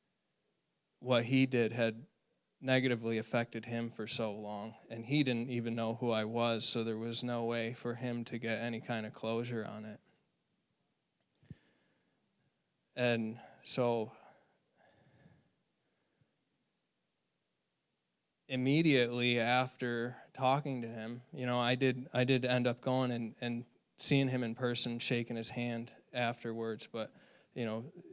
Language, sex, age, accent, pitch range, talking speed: English, male, 20-39, American, 115-125 Hz, 130 wpm